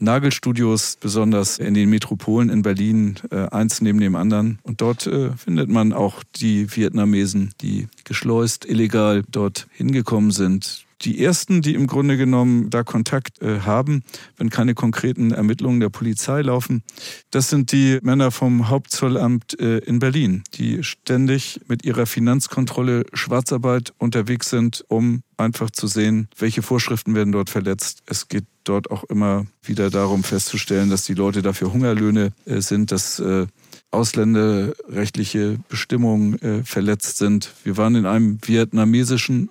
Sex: male